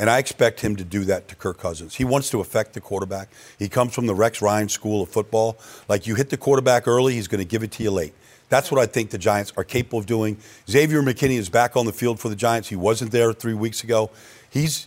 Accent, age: American, 50-69